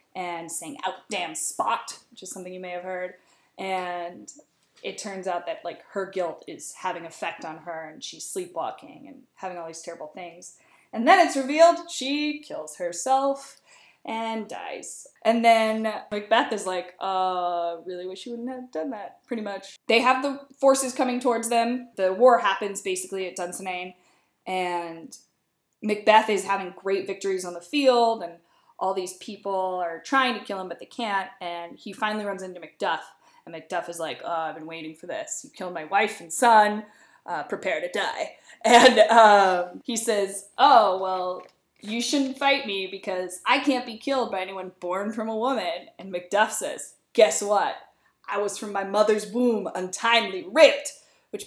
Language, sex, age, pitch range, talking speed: English, female, 20-39, 185-245 Hz, 180 wpm